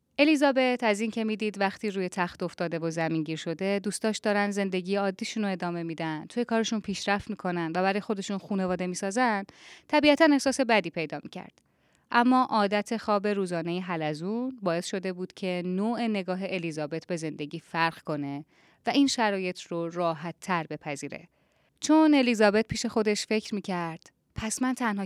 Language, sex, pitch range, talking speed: Persian, female, 165-230 Hz, 160 wpm